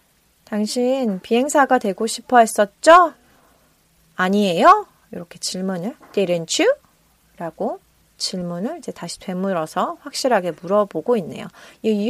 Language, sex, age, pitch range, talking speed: English, female, 30-49, 195-260 Hz, 95 wpm